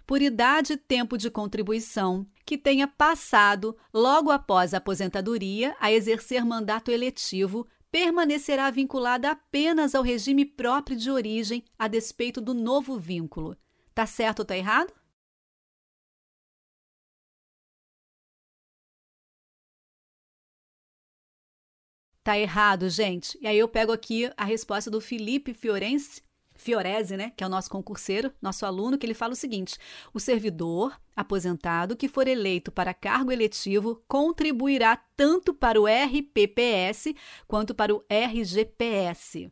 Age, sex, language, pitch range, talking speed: 40-59, female, Portuguese, 210-265 Hz, 120 wpm